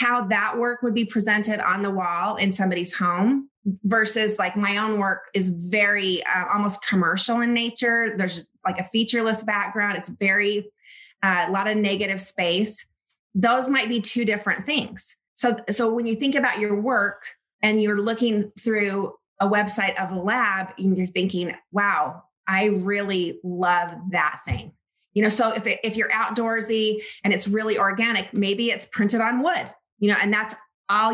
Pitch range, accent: 190-225 Hz, American